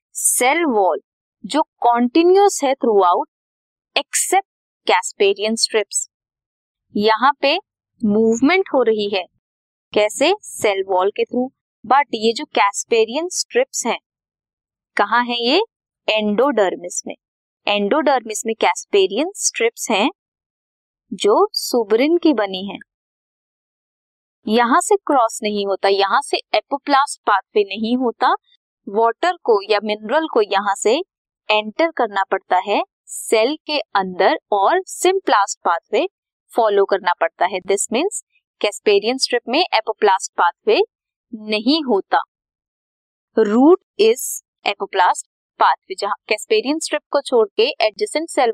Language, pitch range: Hindi, 210-340 Hz